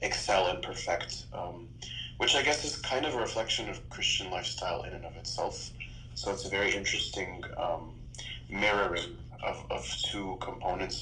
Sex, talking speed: male, 165 wpm